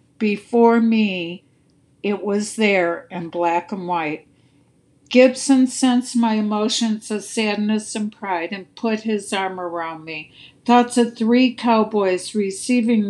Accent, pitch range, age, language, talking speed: American, 185-225 Hz, 60-79, English, 130 wpm